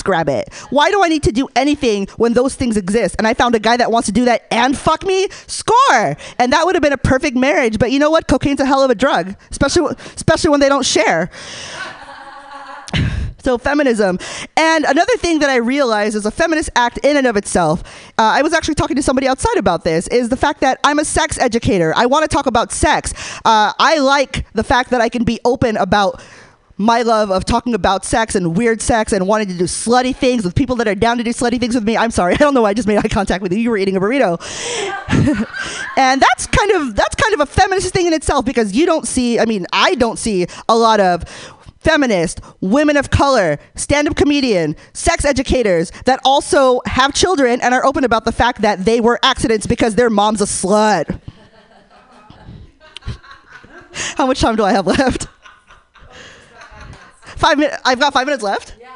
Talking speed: 215 wpm